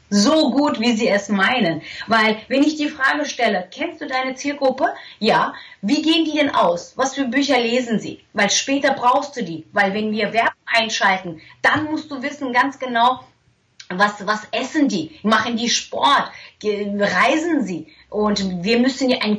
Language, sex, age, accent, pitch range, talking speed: German, female, 30-49, German, 190-270 Hz, 180 wpm